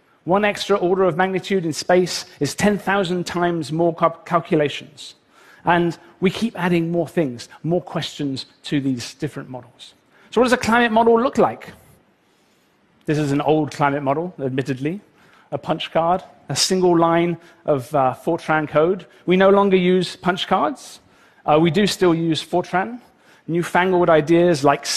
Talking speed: 155 wpm